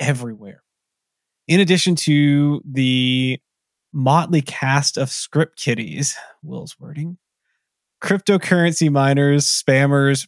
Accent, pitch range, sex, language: American, 130-160 Hz, male, English